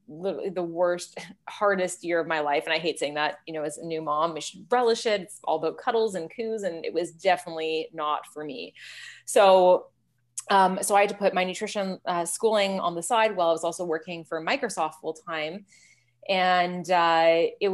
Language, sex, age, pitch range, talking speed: English, female, 20-39, 165-205 Hz, 205 wpm